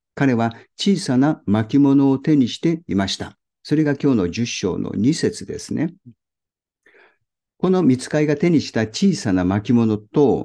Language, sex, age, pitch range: Japanese, male, 50-69, 105-145 Hz